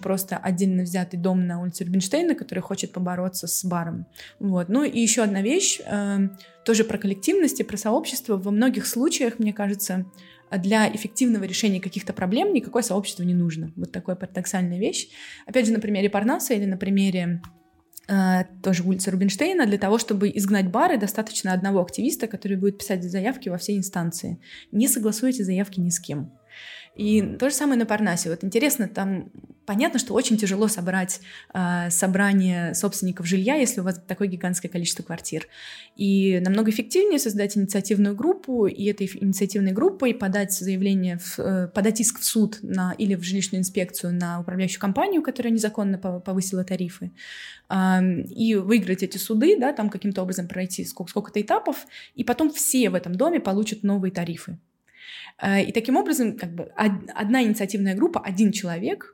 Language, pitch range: Russian, 185-220 Hz